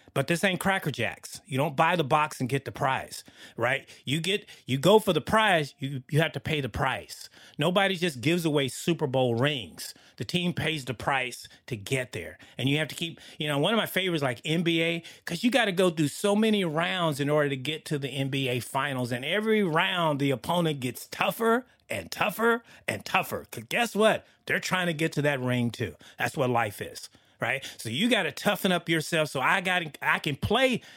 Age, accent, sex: 30-49, American, male